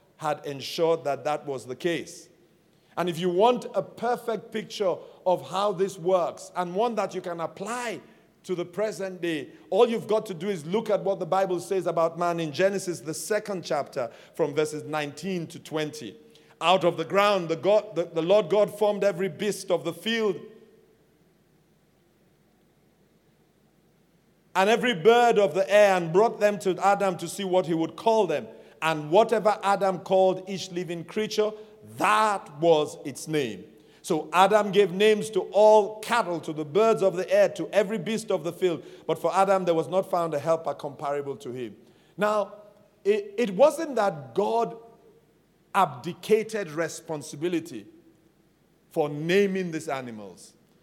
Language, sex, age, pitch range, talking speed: English, male, 50-69, 165-210 Hz, 165 wpm